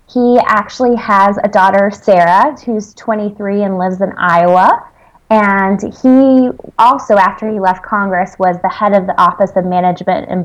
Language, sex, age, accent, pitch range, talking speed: English, female, 20-39, American, 180-210 Hz, 160 wpm